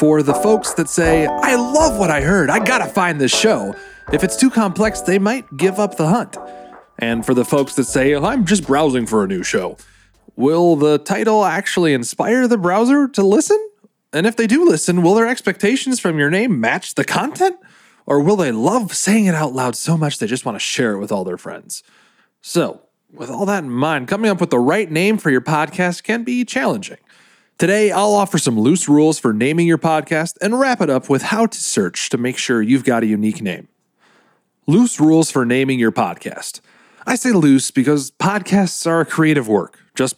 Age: 30-49